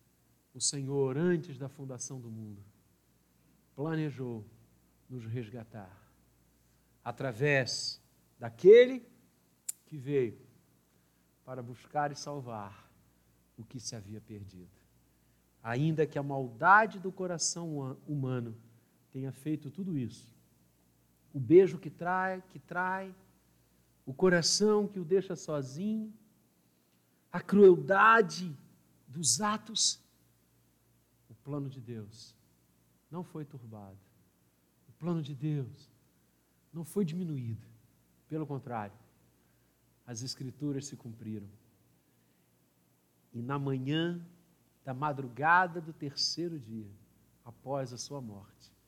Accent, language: Brazilian, Portuguese